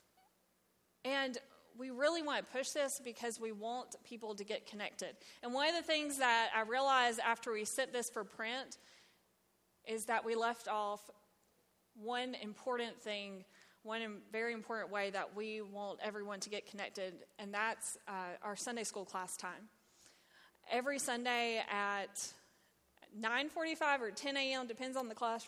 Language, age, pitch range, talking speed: English, 20-39, 210-255 Hz, 155 wpm